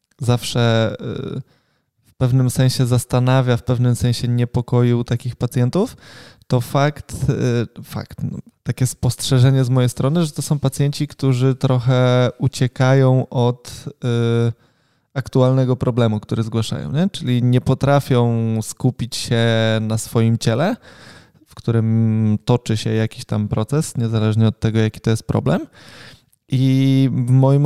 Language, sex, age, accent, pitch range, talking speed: Polish, male, 20-39, native, 120-135 Hz, 125 wpm